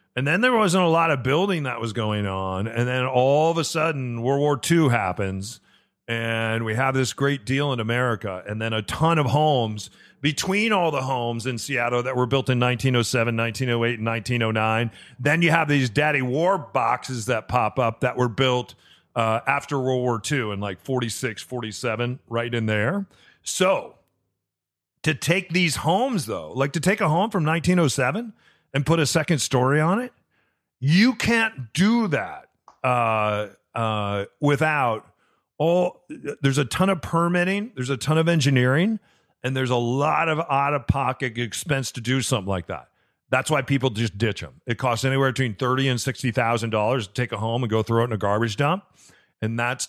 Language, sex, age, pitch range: English, male, 40-59, 115-145 Hz